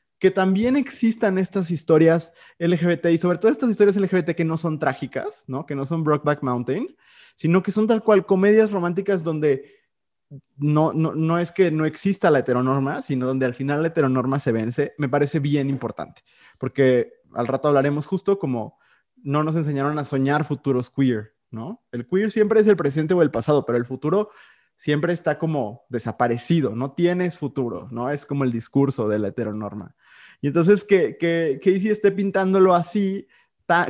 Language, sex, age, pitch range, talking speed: Spanish, male, 20-39, 135-190 Hz, 180 wpm